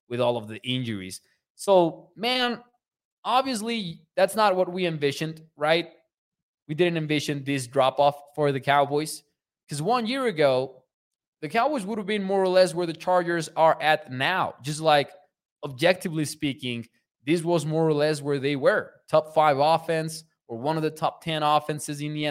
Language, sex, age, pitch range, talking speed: English, male, 20-39, 135-170 Hz, 175 wpm